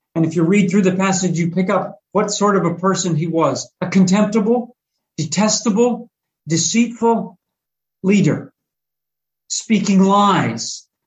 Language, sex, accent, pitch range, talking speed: English, male, American, 155-200 Hz, 130 wpm